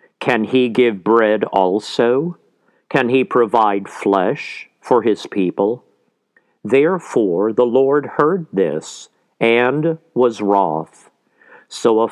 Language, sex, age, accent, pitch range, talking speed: English, male, 50-69, American, 110-135 Hz, 110 wpm